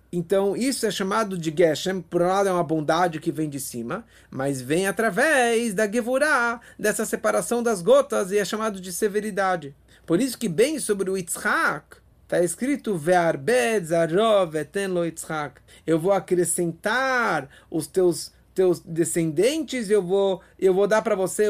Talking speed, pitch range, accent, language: 160 wpm, 170-220 Hz, Brazilian, English